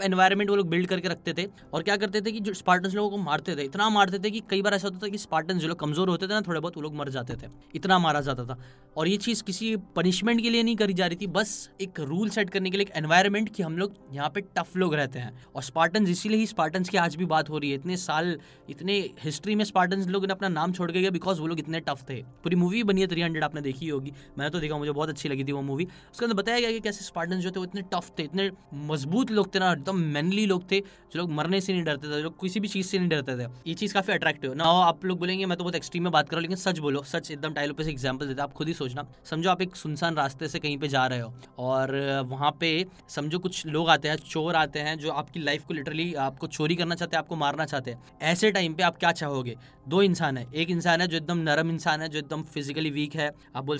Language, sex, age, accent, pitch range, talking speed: Hindi, male, 10-29, native, 150-190 Hz, 170 wpm